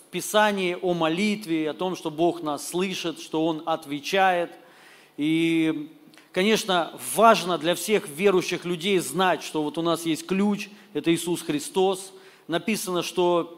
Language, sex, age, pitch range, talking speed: Russian, male, 40-59, 175-225 Hz, 135 wpm